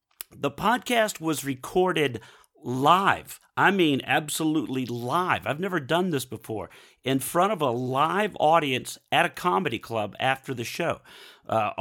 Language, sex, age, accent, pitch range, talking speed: English, male, 50-69, American, 120-155 Hz, 140 wpm